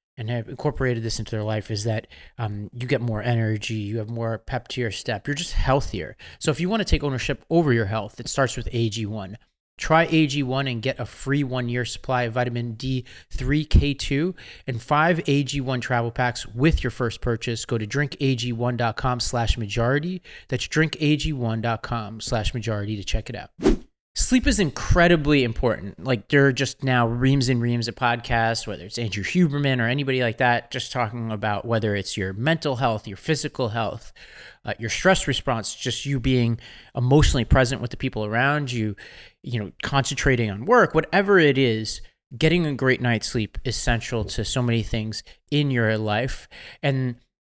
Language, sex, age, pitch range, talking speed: English, male, 30-49, 115-140 Hz, 175 wpm